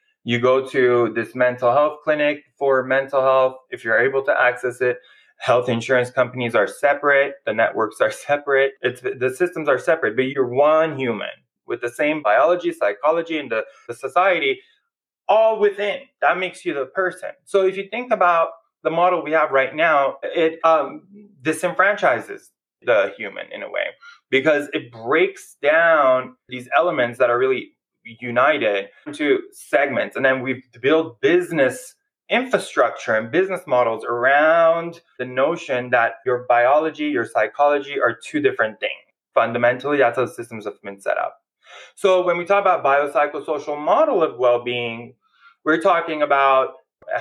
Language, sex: English, male